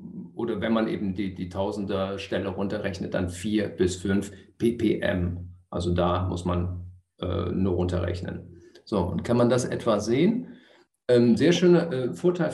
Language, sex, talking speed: German, male, 155 wpm